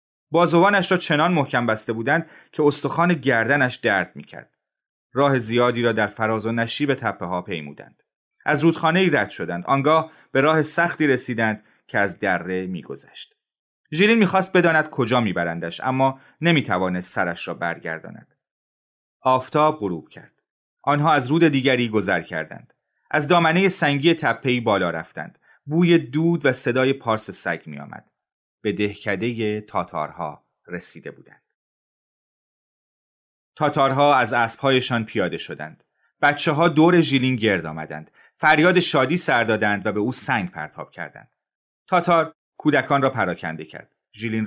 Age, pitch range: 30-49, 110-155 Hz